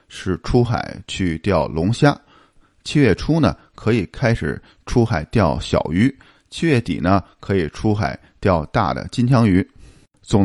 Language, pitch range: Chinese, 95-125 Hz